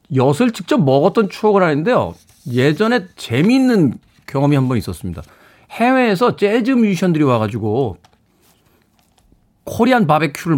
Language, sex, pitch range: Korean, male, 125-205 Hz